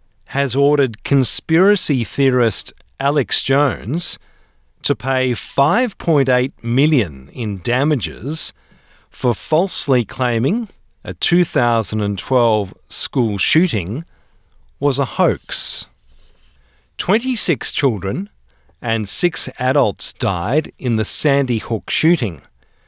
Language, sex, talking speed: English, male, 100 wpm